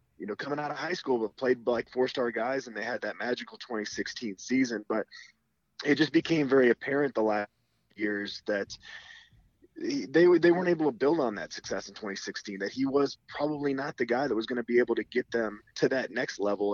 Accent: American